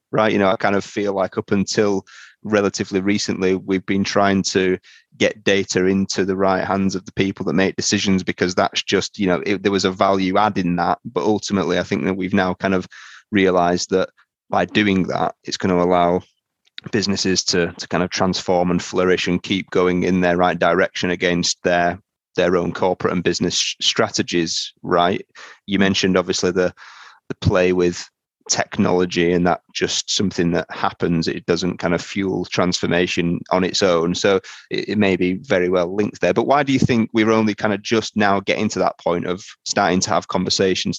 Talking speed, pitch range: 200 wpm, 90-100 Hz